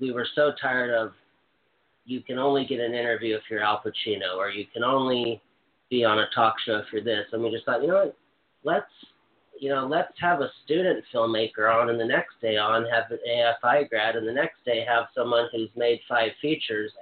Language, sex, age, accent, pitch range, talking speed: English, male, 40-59, American, 115-135 Hz, 220 wpm